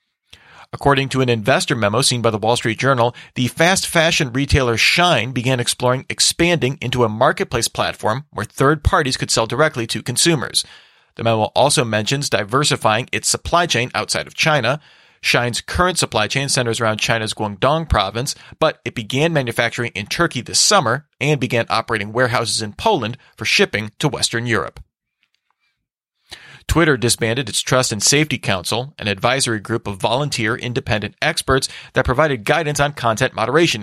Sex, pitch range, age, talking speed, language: male, 115-140 Hz, 40-59, 160 wpm, English